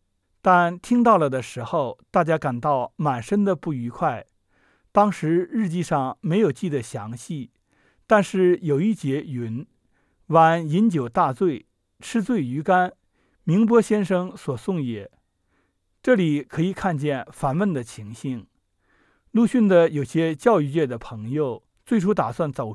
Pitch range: 140-205 Hz